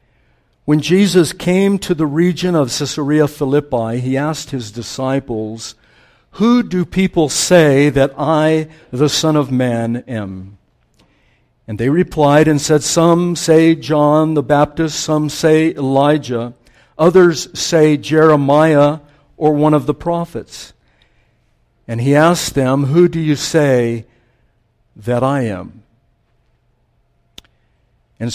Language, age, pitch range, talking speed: English, 60-79, 115-155 Hz, 120 wpm